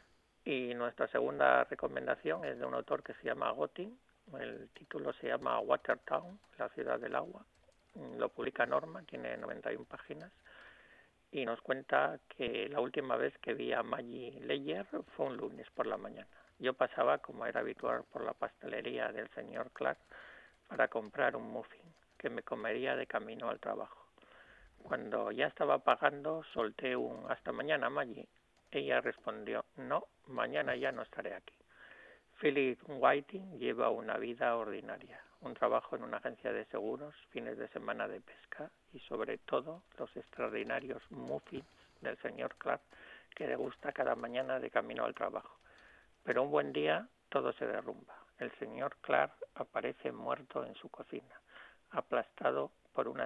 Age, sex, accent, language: 50-69, male, Spanish, Spanish